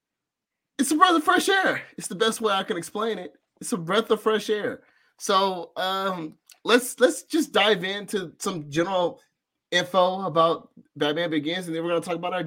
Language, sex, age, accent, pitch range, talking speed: English, male, 30-49, American, 140-215 Hz, 195 wpm